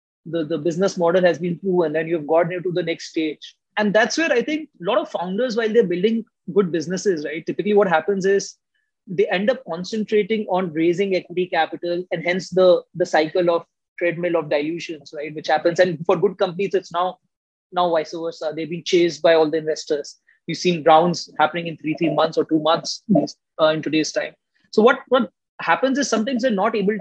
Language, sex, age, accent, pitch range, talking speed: English, male, 20-39, Indian, 165-205 Hz, 210 wpm